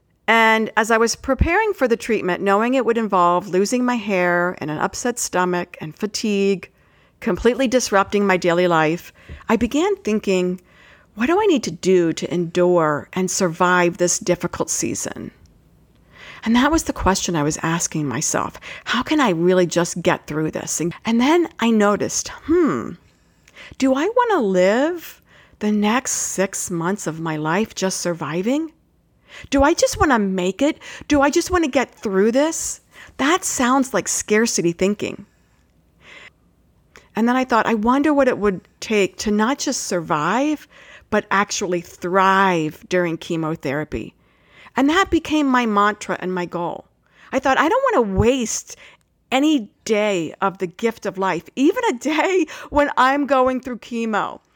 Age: 50-69